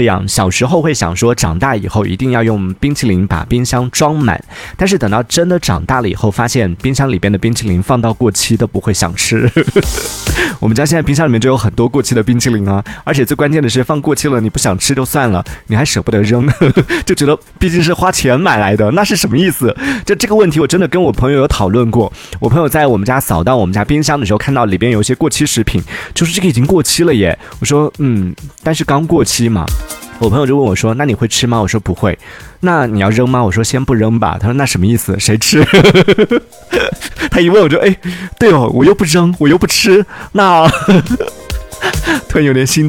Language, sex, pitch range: Chinese, male, 105-150 Hz